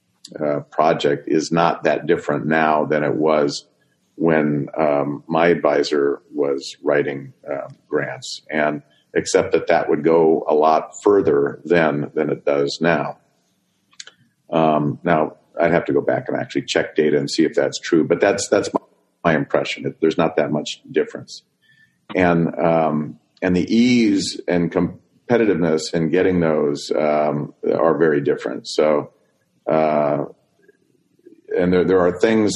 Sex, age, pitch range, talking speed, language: male, 40-59, 75-90 Hz, 145 wpm, English